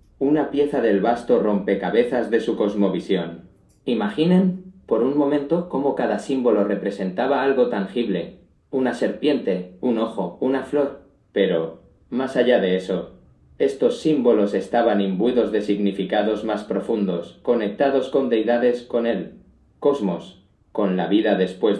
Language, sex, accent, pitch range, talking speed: Spanish, male, Spanish, 100-140 Hz, 130 wpm